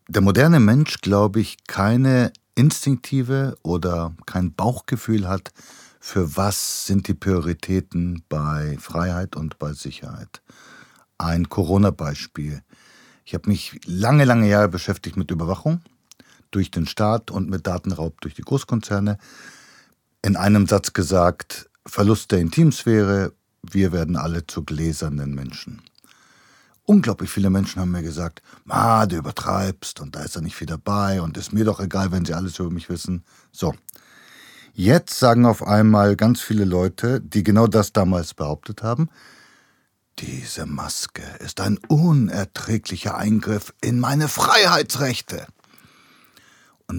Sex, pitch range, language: male, 85-110 Hz, German